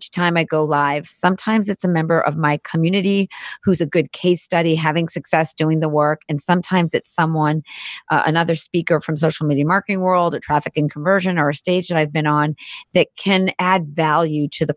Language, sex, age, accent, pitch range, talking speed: English, female, 30-49, American, 150-170 Hz, 205 wpm